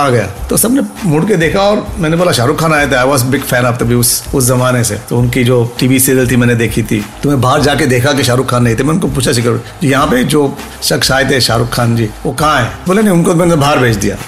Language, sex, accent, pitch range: Hindi, male, native, 125-150 Hz